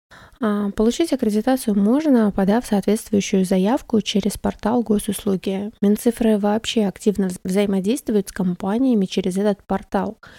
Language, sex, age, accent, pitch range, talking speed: Russian, female, 20-39, native, 195-220 Hz, 105 wpm